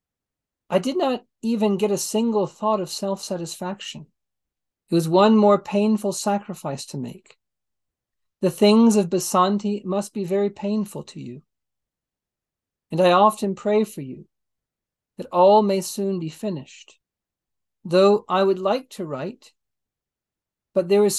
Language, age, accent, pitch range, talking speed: English, 50-69, American, 180-210 Hz, 140 wpm